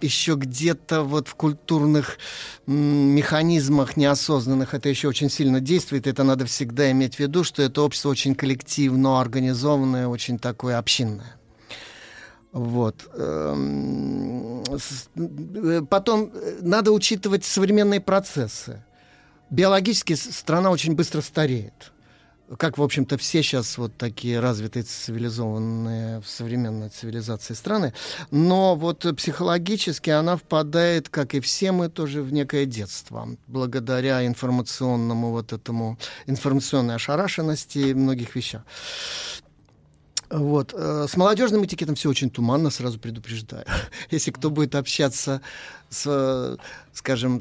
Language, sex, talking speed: Russian, male, 110 wpm